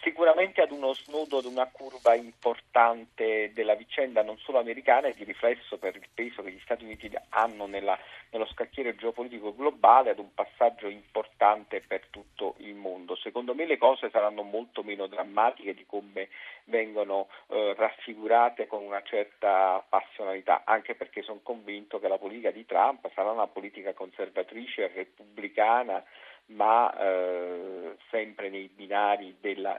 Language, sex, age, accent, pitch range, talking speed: Italian, male, 50-69, native, 105-145 Hz, 145 wpm